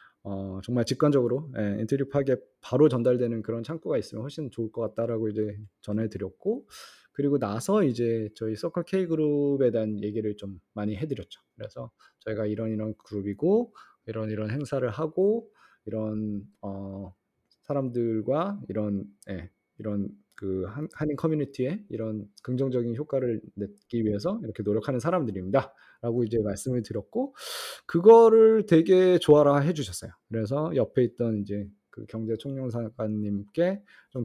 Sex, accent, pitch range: male, native, 110-145 Hz